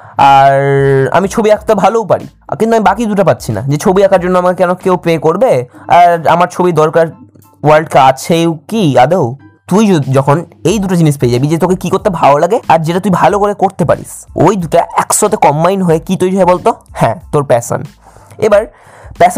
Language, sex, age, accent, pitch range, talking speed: Bengali, male, 20-39, native, 145-195 Hz, 135 wpm